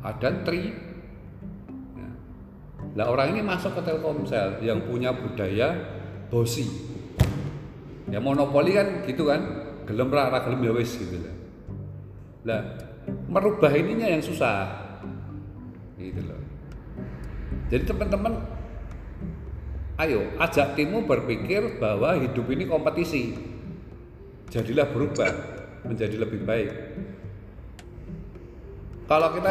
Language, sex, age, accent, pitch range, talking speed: Indonesian, male, 40-59, native, 100-145 Hz, 90 wpm